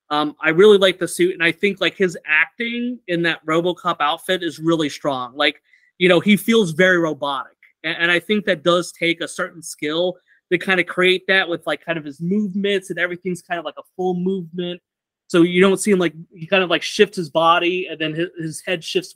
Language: English